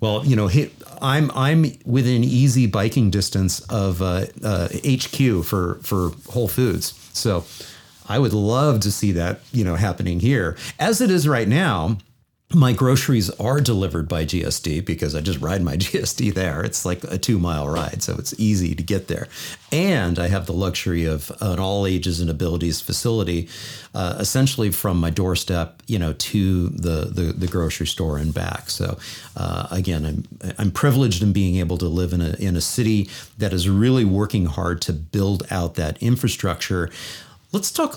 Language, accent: English, American